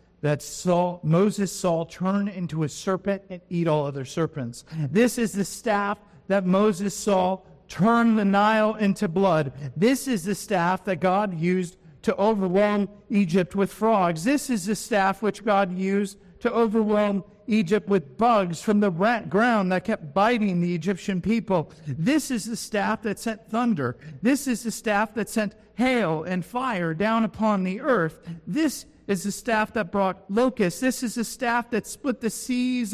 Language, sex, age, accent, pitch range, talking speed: English, male, 50-69, American, 155-215 Hz, 170 wpm